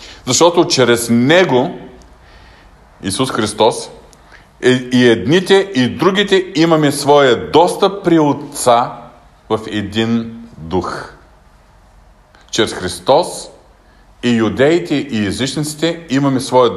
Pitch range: 100-145 Hz